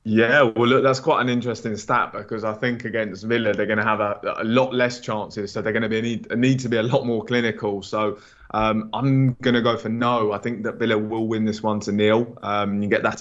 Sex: male